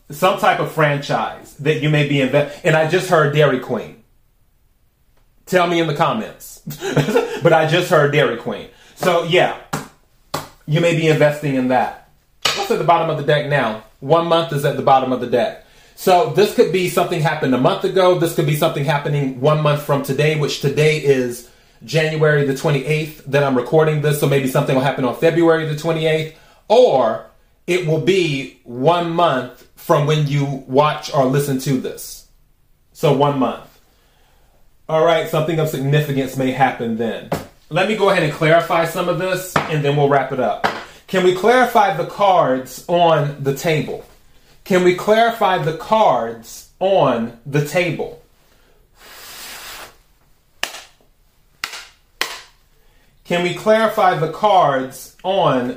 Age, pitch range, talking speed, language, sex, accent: 30-49, 140-170 Hz, 160 wpm, English, male, American